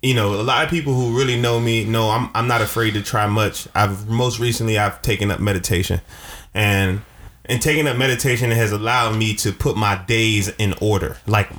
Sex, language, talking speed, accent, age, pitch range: male, English, 205 wpm, American, 20-39, 105-130 Hz